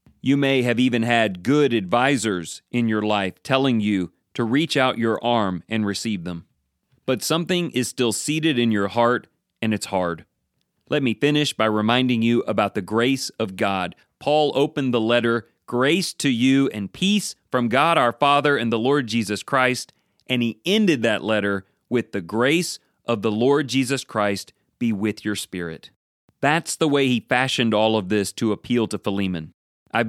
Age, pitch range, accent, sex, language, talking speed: 40-59, 105-135 Hz, American, male, English, 180 wpm